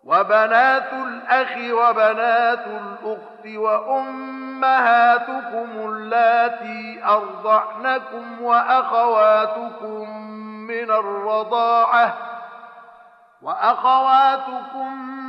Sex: male